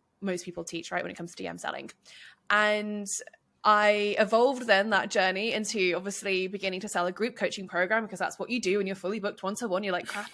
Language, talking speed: English, 220 wpm